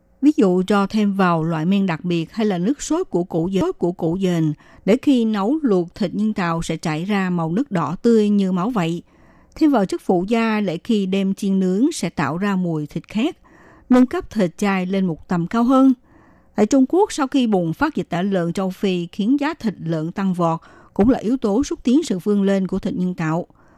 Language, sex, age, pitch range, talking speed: Vietnamese, female, 60-79, 175-235 Hz, 225 wpm